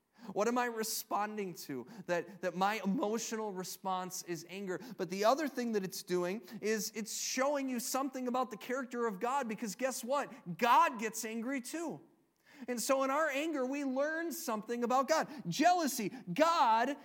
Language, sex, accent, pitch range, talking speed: English, male, American, 175-260 Hz, 170 wpm